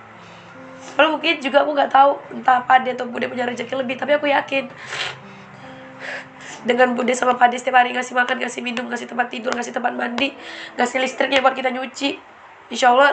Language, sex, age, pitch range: Indonesian, female, 20-39, 245-275 Hz